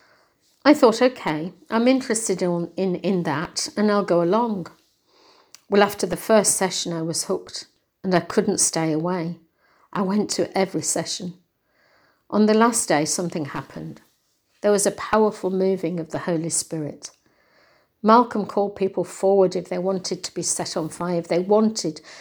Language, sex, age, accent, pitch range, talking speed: English, female, 60-79, British, 175-210 Hz, 160 wpm